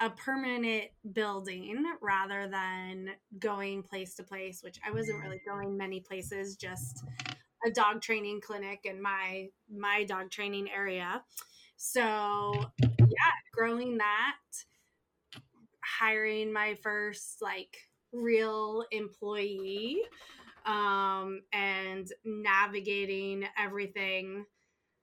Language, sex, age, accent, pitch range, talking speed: English, female, 20-39, American, 195-220 Hz, 100 wpm